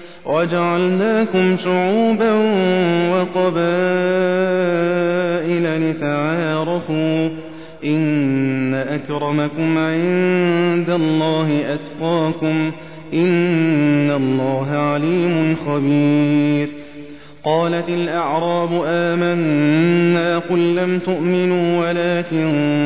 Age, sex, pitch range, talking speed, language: 30-49, male, 150-175 Hz, 55 wpm, Arabic